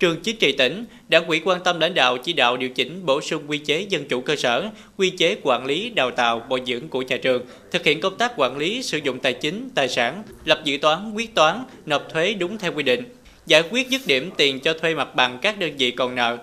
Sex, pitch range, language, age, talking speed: male, 130-180 Hz, Vietnamese, 20-39, 255 wpm